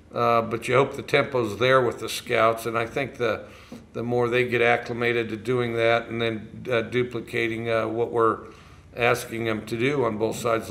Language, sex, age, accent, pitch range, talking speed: English, male, 50-69, American, 115-125 Hz, 200 wpm